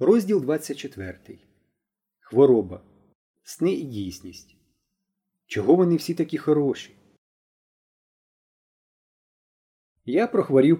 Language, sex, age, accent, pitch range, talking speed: Ukrainian, male, 30-49, native, 120-165 Hz, 70 wpm